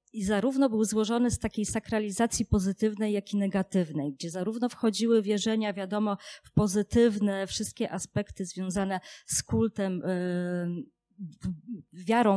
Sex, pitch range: female, 175-205 Hz